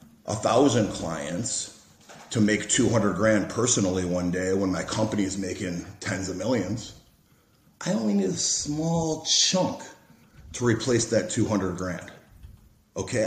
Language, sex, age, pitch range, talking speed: English, male, 30-49, 95-155 Hz, 135 wpm